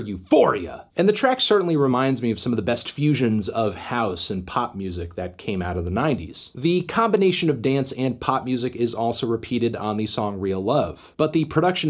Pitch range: 110-150 Hz